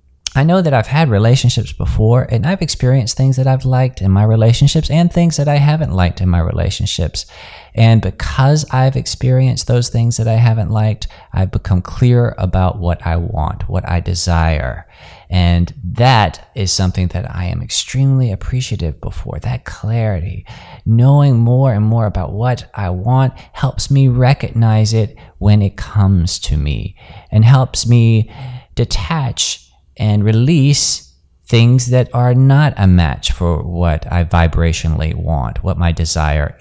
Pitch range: 90-125 Hz